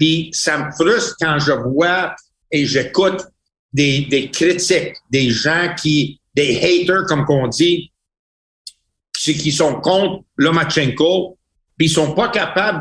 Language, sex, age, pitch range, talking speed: French, male, 60-79, 155-190 Hz, 145 wpm